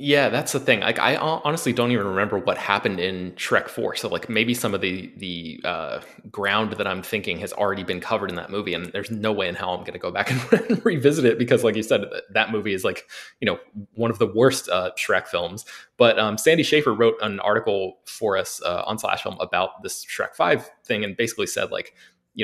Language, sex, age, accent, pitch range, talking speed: English, male, 20-39, American, 100-135 Hz, 235 wpm